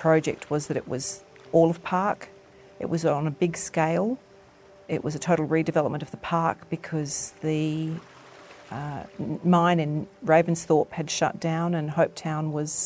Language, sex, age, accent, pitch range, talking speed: English, female, 40-59, Australian, 145-165 Hz, 160 wpm